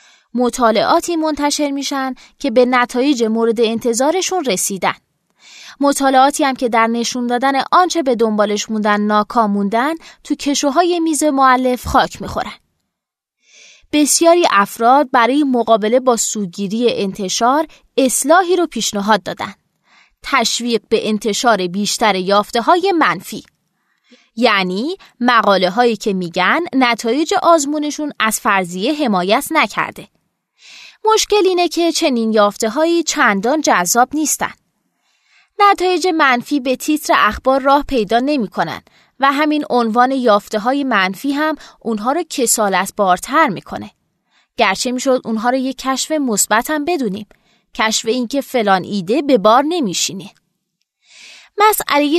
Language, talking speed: Persian, 115 wpm